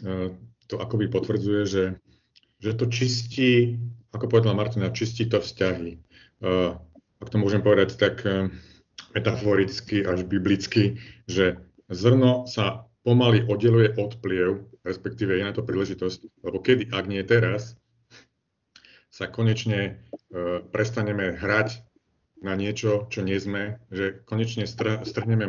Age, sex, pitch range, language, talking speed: 40-59, male, 95-115 Hz, Slovak, 120 wpm